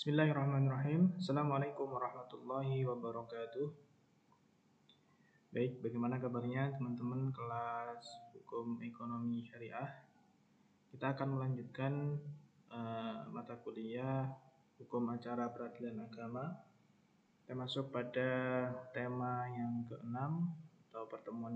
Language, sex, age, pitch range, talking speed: Indonesian, male, 20-39, 115-135 Hz, 85 wpm